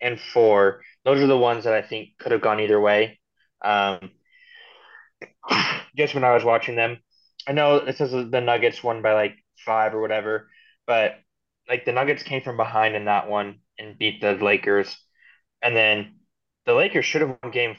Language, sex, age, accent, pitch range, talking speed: English, male, 20-39, American, 105-145 Hz, 185 wpm